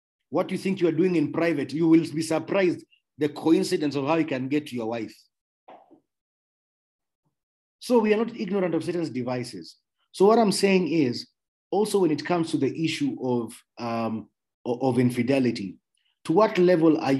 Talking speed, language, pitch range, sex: 175 wpm, English, 125-165 Hz, male